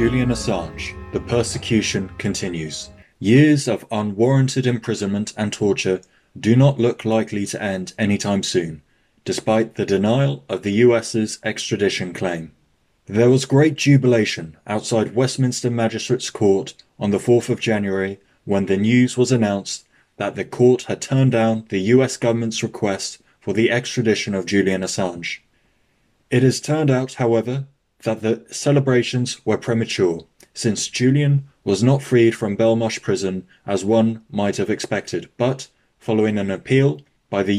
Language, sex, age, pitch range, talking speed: English, male, 20-39, 100-125 Hz, 145 wpm